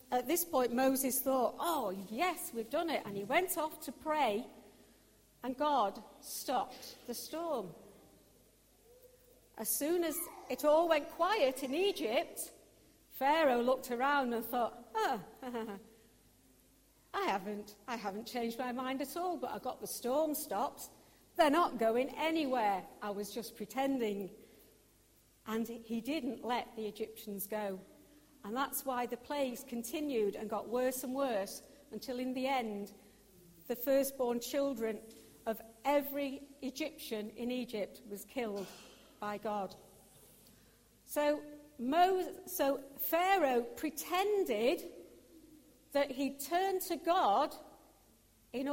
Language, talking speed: English, 130 wpm